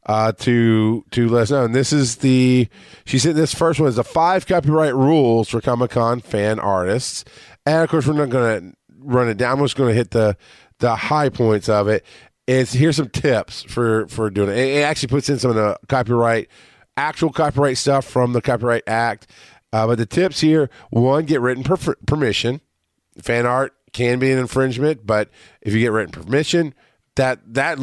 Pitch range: 110-135 Hz